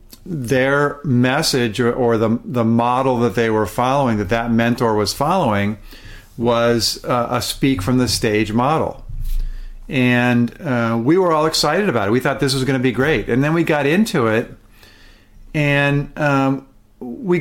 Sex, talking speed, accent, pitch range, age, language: male, 150 wpm, American, 110-130 Hz, 50-69, English